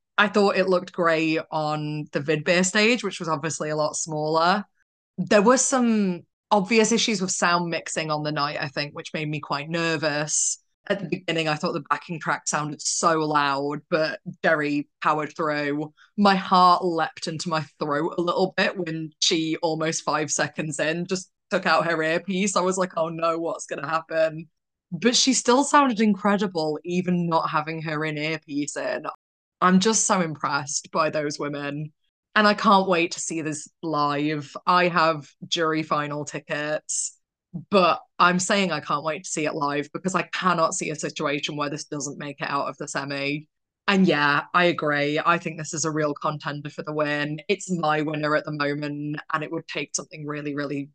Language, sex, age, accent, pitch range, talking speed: English, female, 20-39, British, 150-180 Hz, 190 wpm